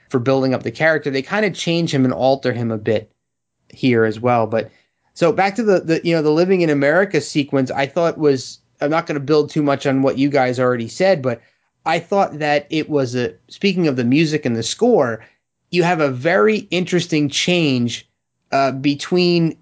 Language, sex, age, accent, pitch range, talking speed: English, male, 30-49, American, 130-165 Hz, 210 wpm